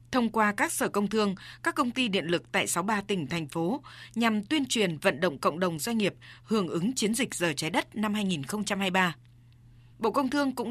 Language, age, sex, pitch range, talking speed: Vietnamese, 20-39, female, 180-235 Hz, 215 wpm